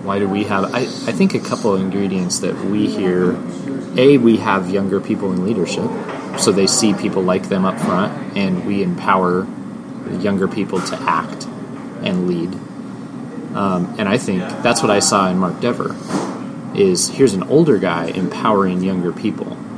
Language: English